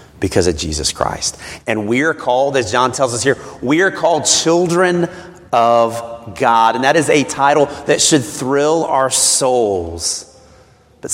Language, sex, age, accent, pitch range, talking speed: English, male, 30-49, American, 95-130 Hz, 160 wpm